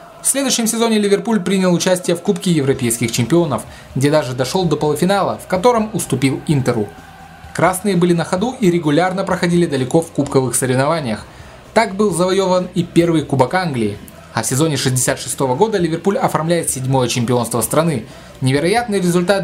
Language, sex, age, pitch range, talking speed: Russian, male, 20-39, 130-180 Hz, 150 wpm